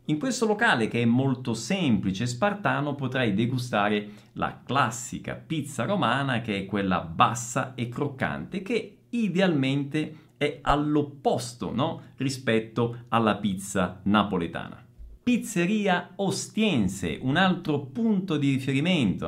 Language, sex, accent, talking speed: Italian, male, native, 110 wpm